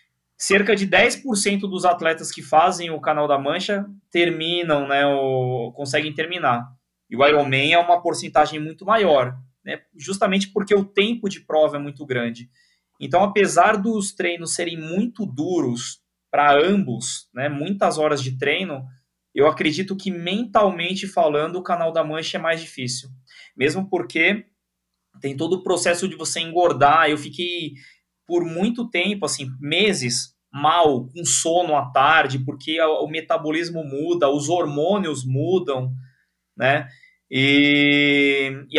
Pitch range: 140-175 Hz